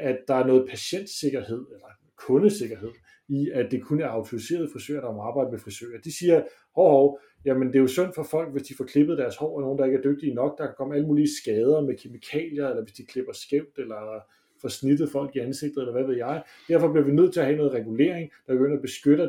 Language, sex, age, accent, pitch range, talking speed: English, male, 30-49, Danish, 130-155 Hz, 250 wpm